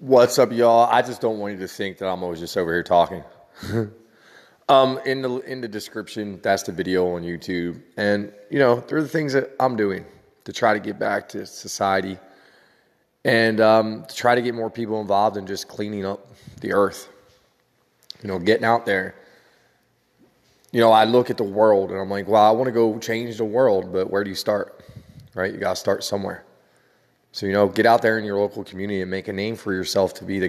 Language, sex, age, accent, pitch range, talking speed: English, male, 20-39, American, 100-115 Hz, 220 wpm